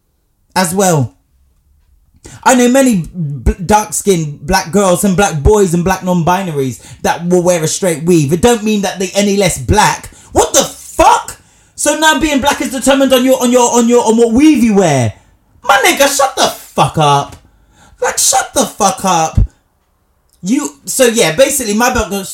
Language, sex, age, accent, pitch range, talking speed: English, male, 20-39, British, 145-215 Hz, 180 wpm